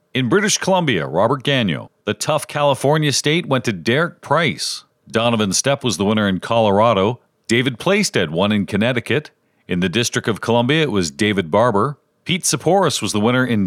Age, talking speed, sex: 40-59, 175 wpm, male